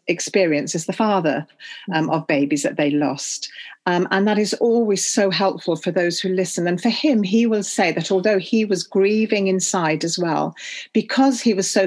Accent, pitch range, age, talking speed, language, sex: British, 165-200 Hz, 40-59, 195 wpm, English, female